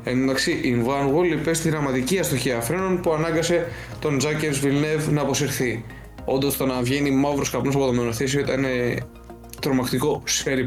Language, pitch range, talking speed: Greek, 125-155 Hz, 145 wpm